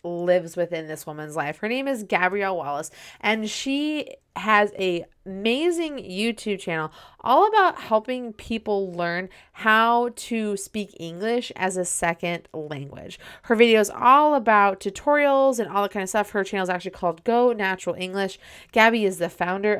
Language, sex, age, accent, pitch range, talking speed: English, female, 30-49, American, 175-225 Hz, 165 wpm